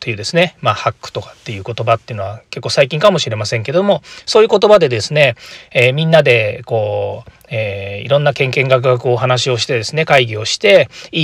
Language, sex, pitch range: Japanese, male, 120-180 Hz